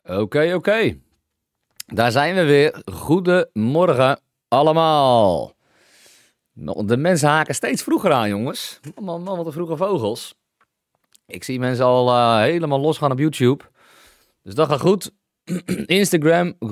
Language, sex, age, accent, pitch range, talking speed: English, male, 40-59, Dutch, 100-155 Hz, 120 wpm